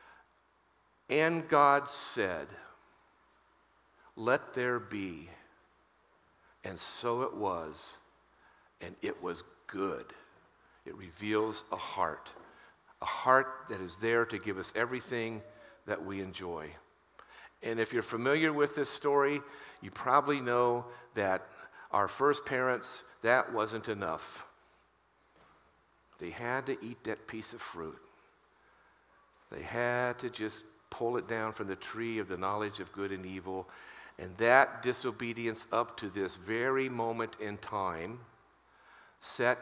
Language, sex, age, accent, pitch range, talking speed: English, male, 50-69, American, 95-125 Hz, 125 wpm